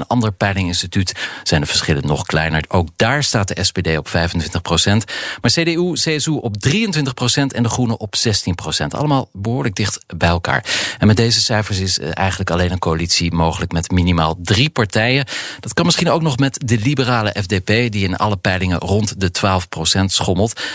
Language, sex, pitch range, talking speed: Dutch, male, 90-120 Hz, 175 wpm